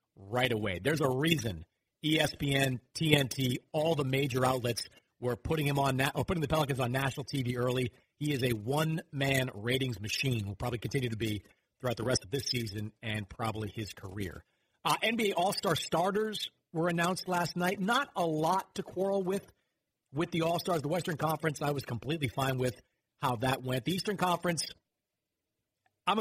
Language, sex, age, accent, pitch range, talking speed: English, male, 40-59, American, 125-155 Hz, 180 wpm